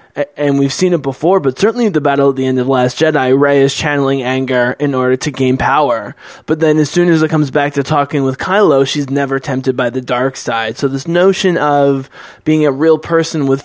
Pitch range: 135-160 Hz